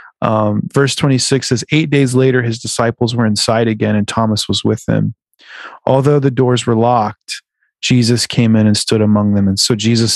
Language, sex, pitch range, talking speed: English, male, 105-130 Hz, 190 wpm